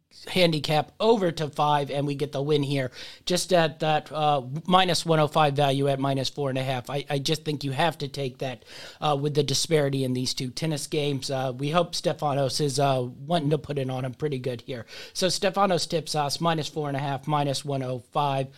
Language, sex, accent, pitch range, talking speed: English, male, American, 140-170 Hz, 215 wpm